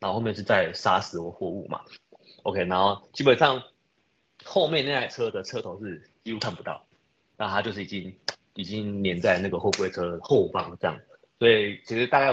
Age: 30-49